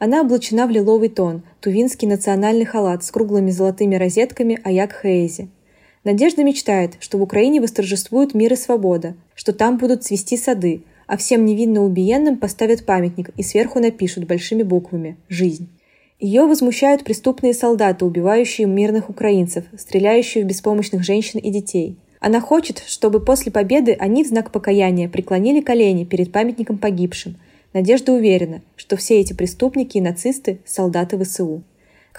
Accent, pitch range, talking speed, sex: native, 190-235 Hz, 145 wpm, female